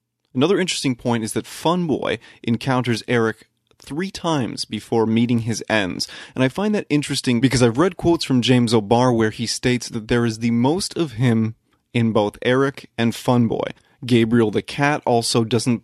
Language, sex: English, male